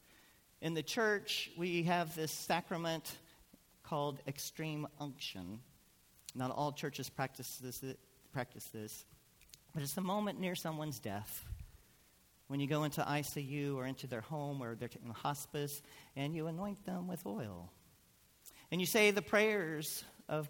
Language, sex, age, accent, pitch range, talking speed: English, male, 40-59, American, 135-185 Hz, 145 wpm